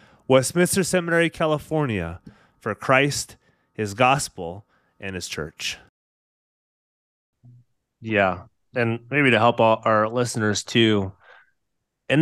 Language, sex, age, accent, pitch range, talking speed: English, male, 30-49, American, 110-140 Hz, 95 wpm